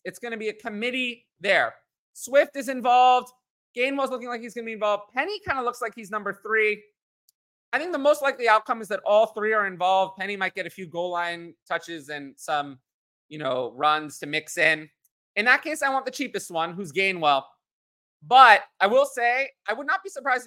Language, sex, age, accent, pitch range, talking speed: English, male, 30-49, American, 160-230 Hz, 215 wpm